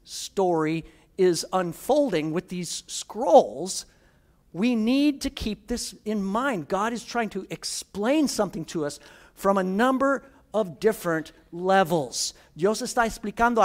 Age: 50-69